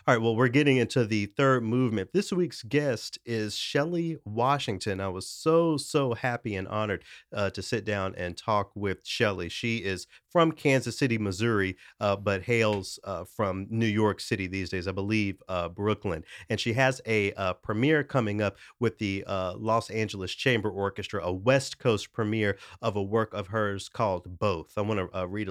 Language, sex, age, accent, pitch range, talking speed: English, male, 30-49, American, 100-120 Hz, 190 wpm